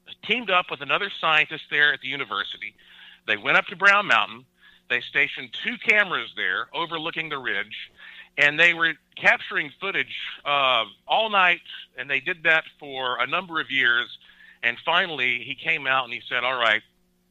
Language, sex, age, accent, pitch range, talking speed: English, male, 50-69, American, 125-160 Hz, 175 wpm